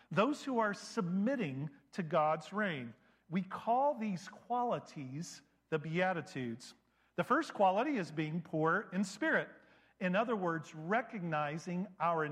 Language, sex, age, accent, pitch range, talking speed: English, male, 50-69, American, 160-230 Hz, 125 wpm